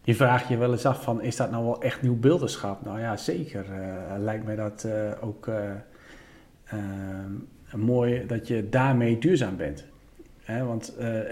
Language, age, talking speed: Dutch, 40-59, 180 wpm